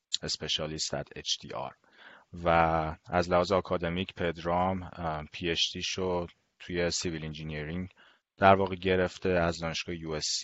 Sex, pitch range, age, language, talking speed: male, 80-95 Hz, 30-49, Persian, 105 wpm